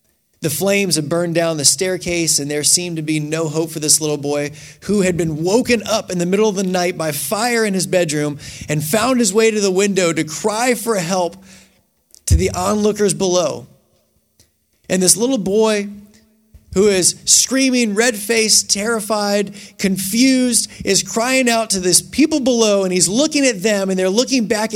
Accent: American